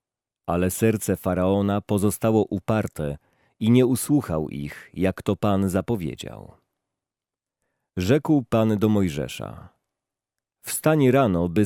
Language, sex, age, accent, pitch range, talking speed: Polish, male, 40-59, native, 90-120 Hz, 105 wpm